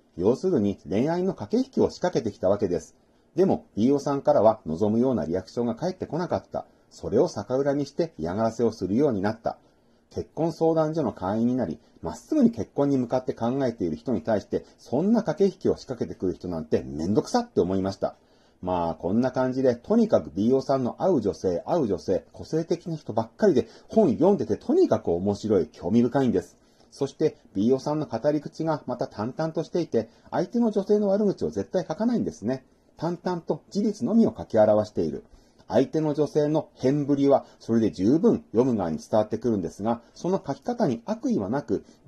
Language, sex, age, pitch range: Japanese, male, 40-59, 115-180 Hz